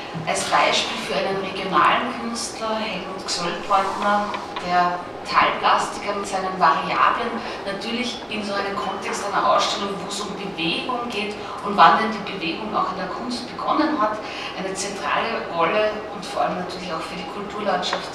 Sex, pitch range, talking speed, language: female, 190-225 Hz, 155 wpm, German